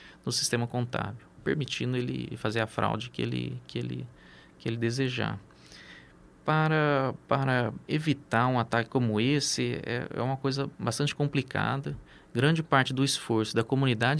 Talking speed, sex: 130 wpm, male